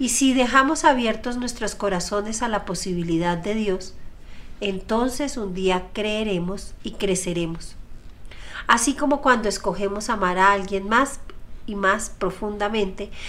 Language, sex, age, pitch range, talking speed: Spanish, female, 40-59, 185-245 Hz, 125 wpm